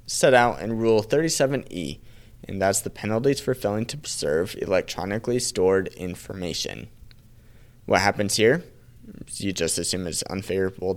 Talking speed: 140 wpm